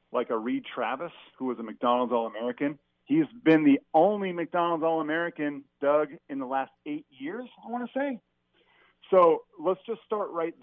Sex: male